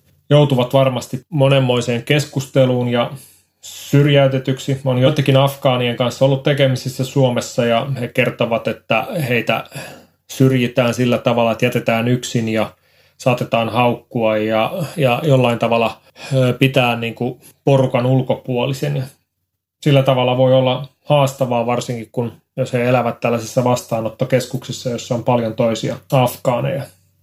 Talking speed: 115 wpm